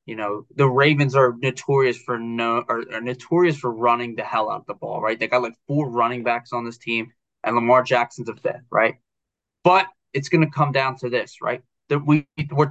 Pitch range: 120-155 Hz